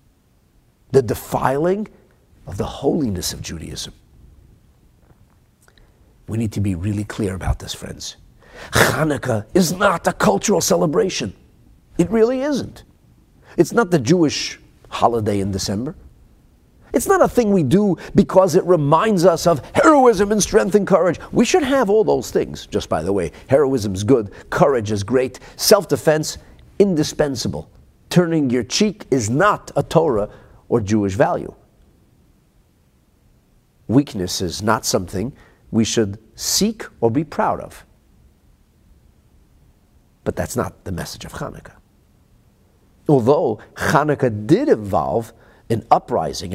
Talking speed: 130 wpm